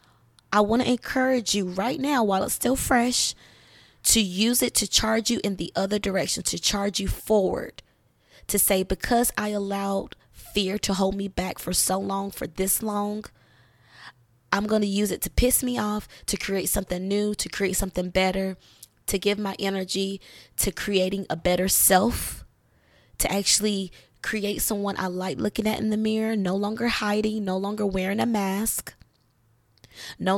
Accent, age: American, 20-39